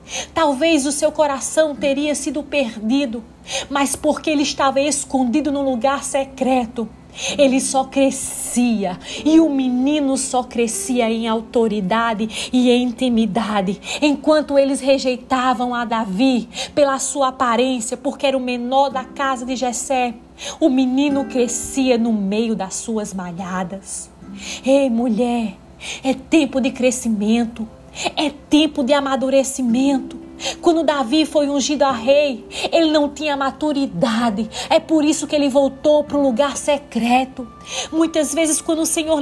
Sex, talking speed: female, 130 wpm